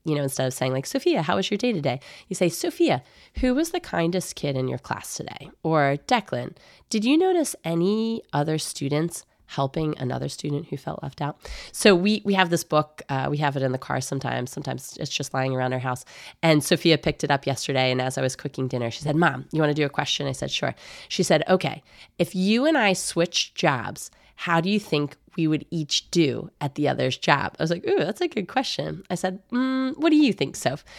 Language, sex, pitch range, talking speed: English, female, 135-180 Hz, 235 wpm